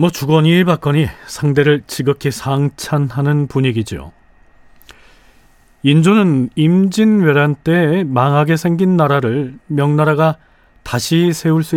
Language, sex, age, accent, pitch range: Korean, male, 40-59, native, 130-160 Hz